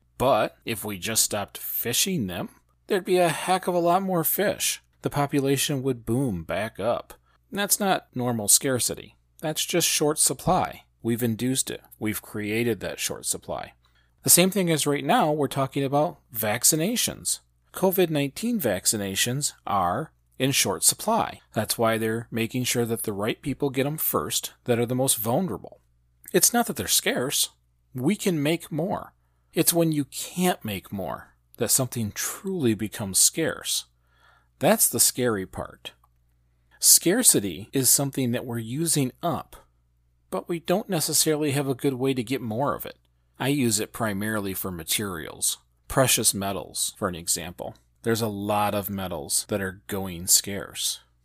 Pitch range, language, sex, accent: 95-145 Hz, English, male, American